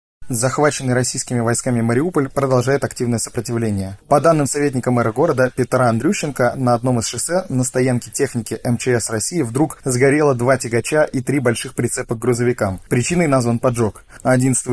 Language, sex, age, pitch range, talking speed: Russian, male, 20-39, 120-140 Hz, 150 wpm